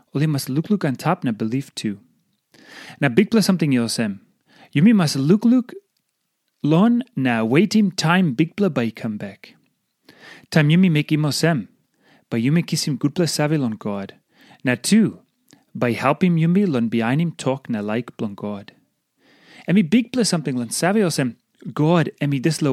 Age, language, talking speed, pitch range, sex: 30-49, English, 175 wpm, 130-190 Hz, male